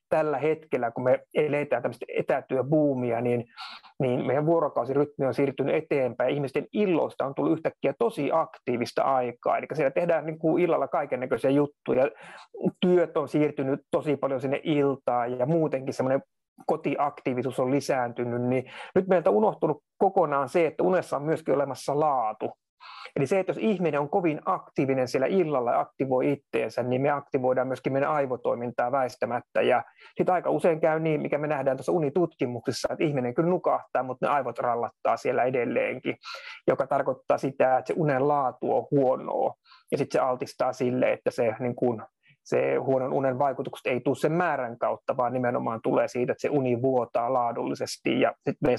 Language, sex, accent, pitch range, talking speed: Finnish, male, native, 130-155 Hz, 170 wpm